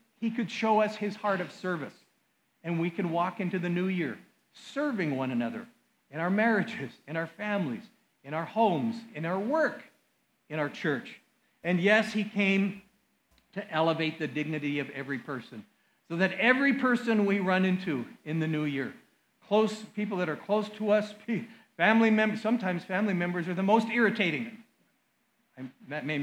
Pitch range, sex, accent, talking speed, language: 160-225 Hz, male, American, 170 wpm, English